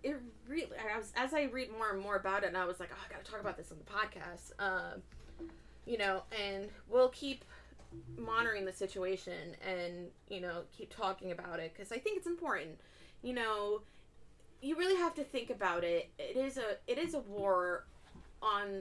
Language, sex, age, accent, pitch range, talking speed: English, female, 20-39, American, 185-270 Hz, 205 wpm